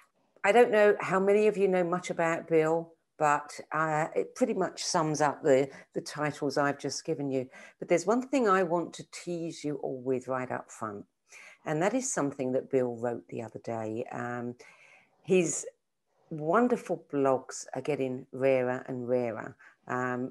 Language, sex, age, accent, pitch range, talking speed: English, female, 50-69, British, 130-170 Hz, 175 wpm